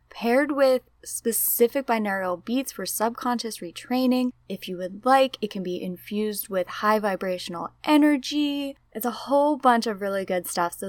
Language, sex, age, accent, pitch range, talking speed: English, female, 10-29, American, 180-260 Hz, 160 wpm